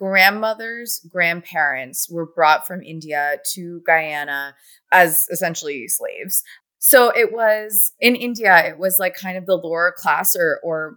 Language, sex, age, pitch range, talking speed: English, female, 20-39, 155-195 Hz, 140 wpm